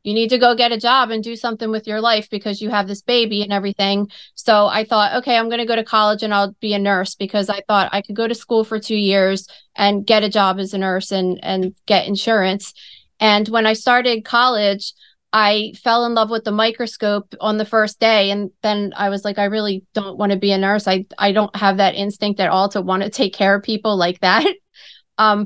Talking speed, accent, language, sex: 245 wpm, American, English, female